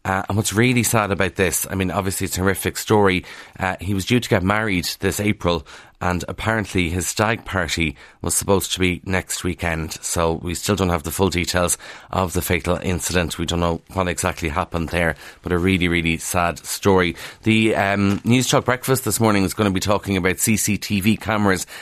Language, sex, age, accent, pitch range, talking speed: English, male, 30-49, Irish, 90-110 Hz, 205 wpm